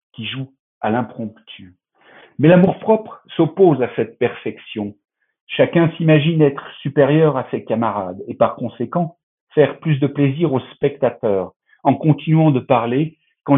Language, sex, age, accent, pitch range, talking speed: French, male, 50-69, French, 120-160 Hz, 140 wpm